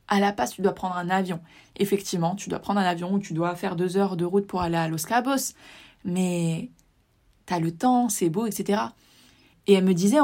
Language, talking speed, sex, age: French, 225 wpm, female, 20-39